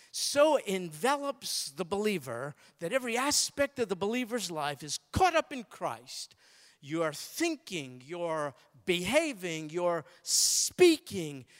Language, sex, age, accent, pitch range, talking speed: English, male, 50-69, American, 155-215 Hz, 115 wpm